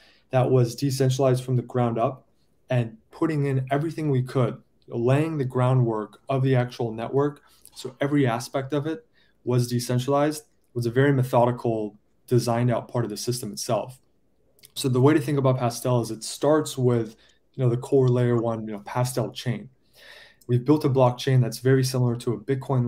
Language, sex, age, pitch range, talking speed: English, male, 20-39, 115-130 Hz, 180 wpm